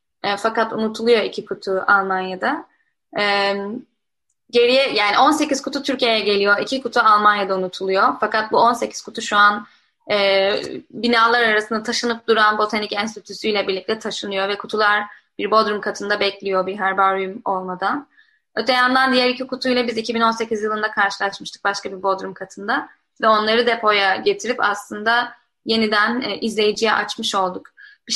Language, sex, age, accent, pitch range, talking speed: Turkish, female, 10-29, native, 205-245 Hz, 135 wpm